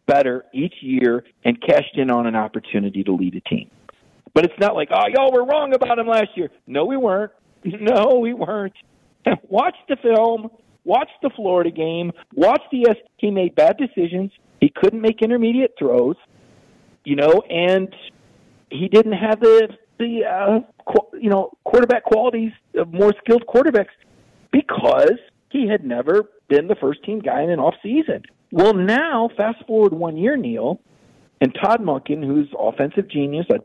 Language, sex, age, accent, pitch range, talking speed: English, male, 50-69, American, 140-230 Hz, 165 wpm